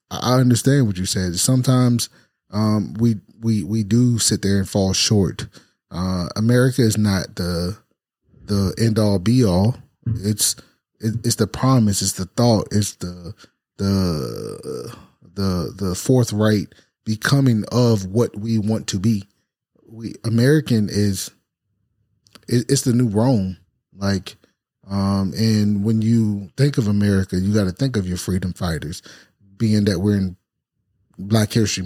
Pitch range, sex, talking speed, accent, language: 100-120 Hz, male, 145 wpm, American, English